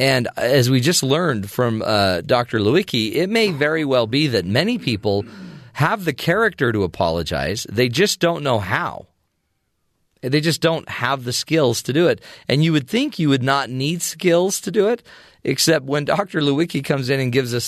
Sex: male